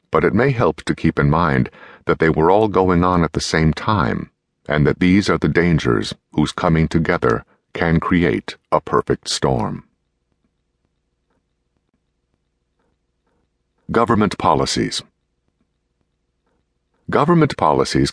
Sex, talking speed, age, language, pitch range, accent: male, 120 wpm, 60-79, English, 70-95 Hz, American